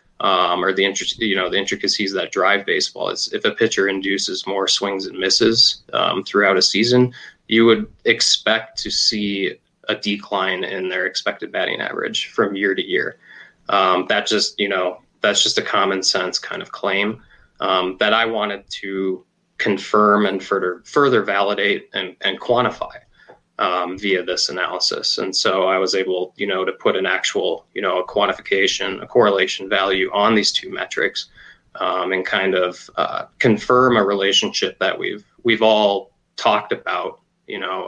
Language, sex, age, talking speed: English, male, 20-39, 170 wpm